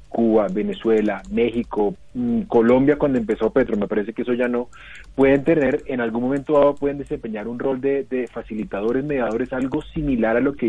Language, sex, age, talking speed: Spanish, male, 30-49, 180 wpm